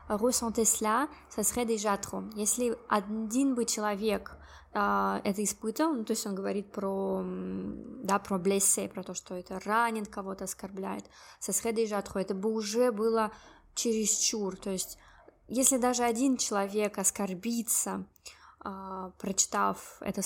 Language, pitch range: Russian, 195-235 Hz